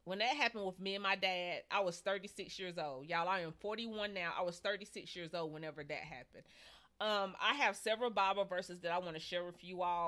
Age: 30-49